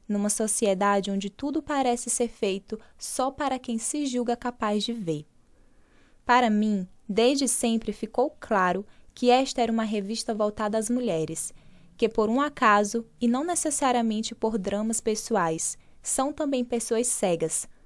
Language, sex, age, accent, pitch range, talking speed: Portuguese, female, 10-29, Brazilian, 205-250 Hz, 145 wpm